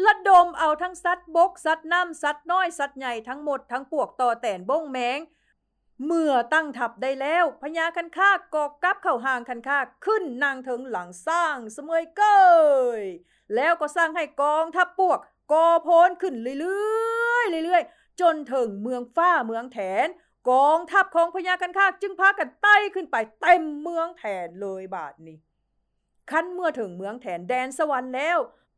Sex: female